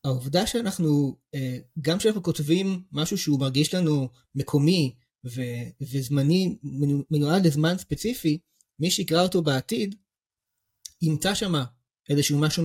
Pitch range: 130-165 Hz